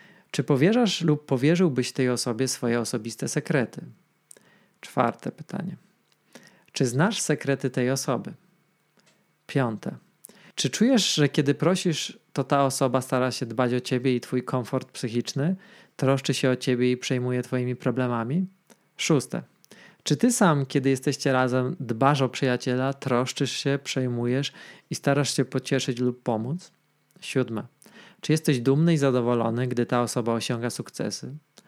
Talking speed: 135 wpm